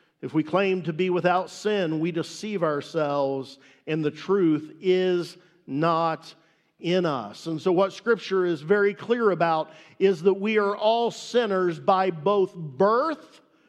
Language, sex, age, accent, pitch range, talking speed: English, male, 50-69, American, 165-210 Hz, 150 wpm